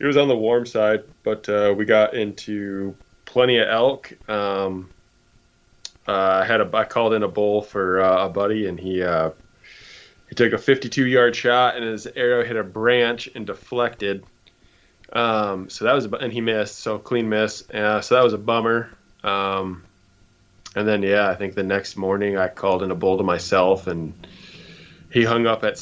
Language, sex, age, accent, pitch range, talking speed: English, male, 20-39, American, 100-120 Hz, 195 wpm